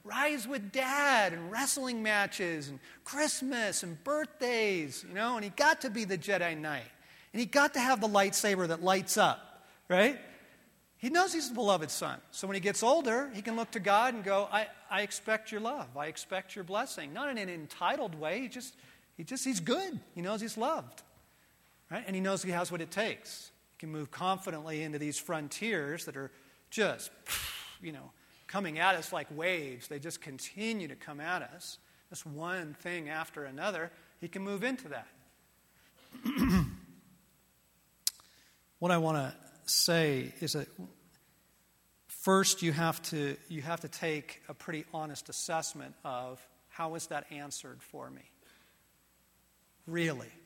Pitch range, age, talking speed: 155-215 Hz, 40-59, 165 wpm